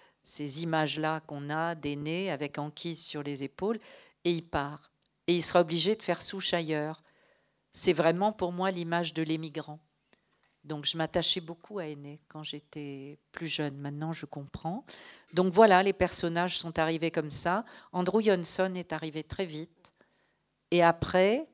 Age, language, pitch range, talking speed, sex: 50-69, French, 150-190 Hz, 160 wpm, female